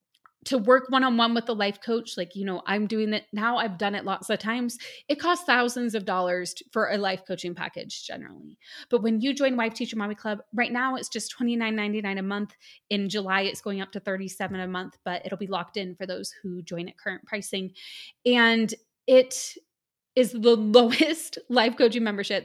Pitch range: 200-245 Hz